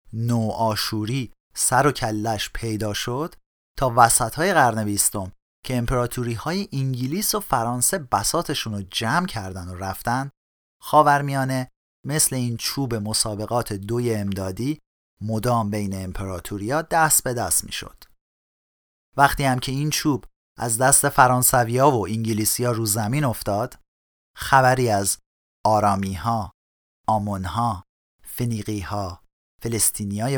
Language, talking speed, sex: Persian, 120 wpm, male